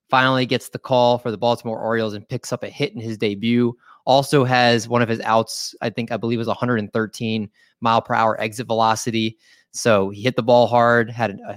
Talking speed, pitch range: 220 wpm, 105-125 Hz